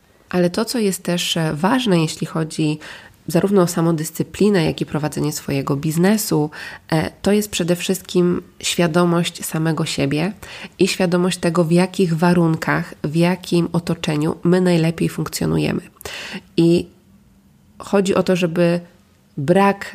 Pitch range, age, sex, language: 160-185 Hz, 20-39, female, Polish